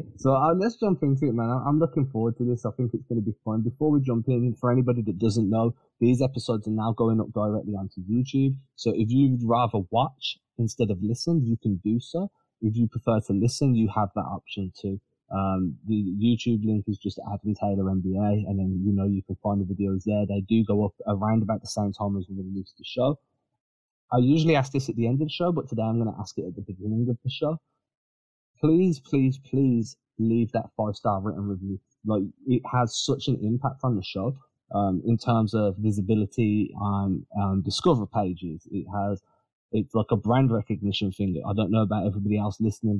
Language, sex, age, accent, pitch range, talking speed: English, male, 20-39, British, 100-125 Hz, 220 wpm